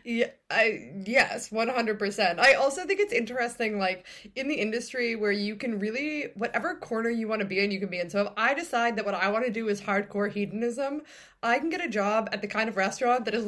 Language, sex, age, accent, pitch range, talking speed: English, female, 20-39, American, 195-250 Hz, 235 wpm